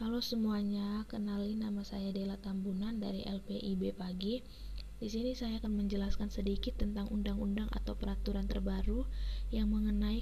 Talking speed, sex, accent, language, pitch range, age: 135 wpm, female, native, Indonesian, 195-220 Hz, 20-39